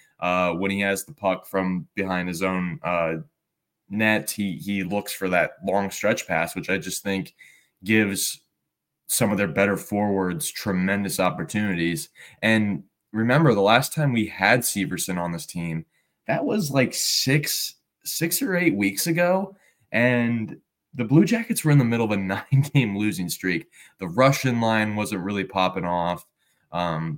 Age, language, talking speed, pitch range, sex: 20-39, English, 160 wpm, 90-110 Hz, male